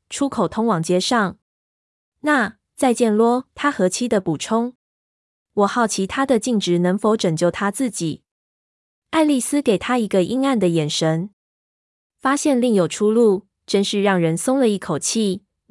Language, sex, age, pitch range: Chinese, female, 20-39, 170-225 Hz